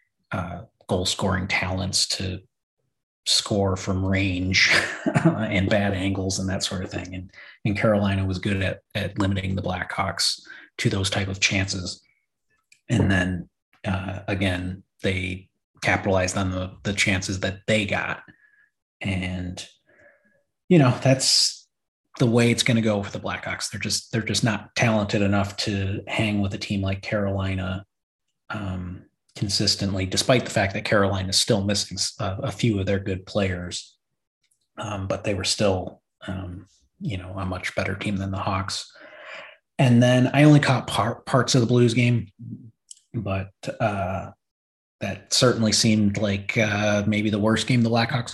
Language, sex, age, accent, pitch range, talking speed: English, male, 30-49, American, 95-110 Hz, 160 wpm